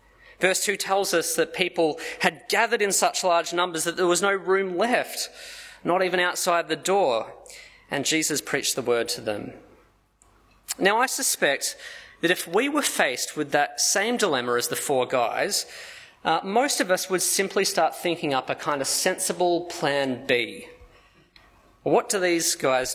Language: English